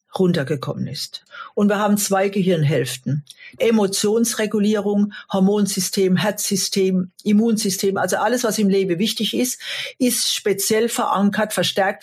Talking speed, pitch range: 110 wpm, 185-225 Hz